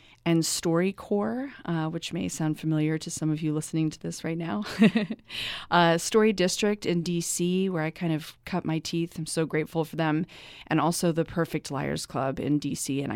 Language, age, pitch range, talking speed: English, 30-49, 150-175 Hz, 185 wpm